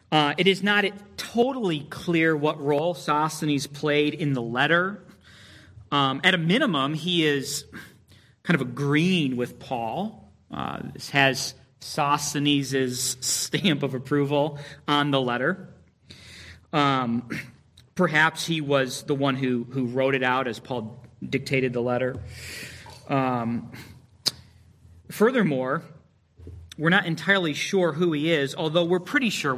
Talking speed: 130 wpm